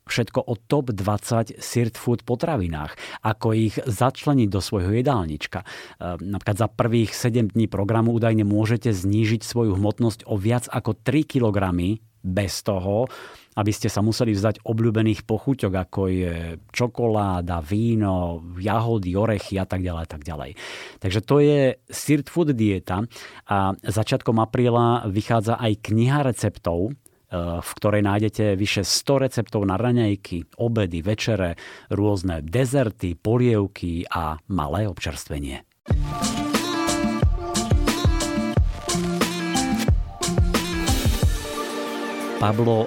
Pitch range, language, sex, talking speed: 100-120 Hz, Slovak, male, 105 wpm